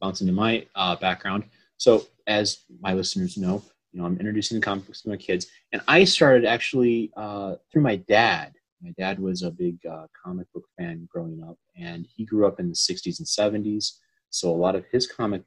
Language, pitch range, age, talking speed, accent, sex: English, 90-130 Hz, 30-49, 205 wpm, American, male